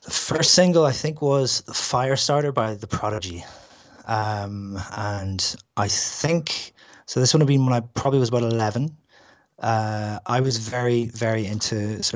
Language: English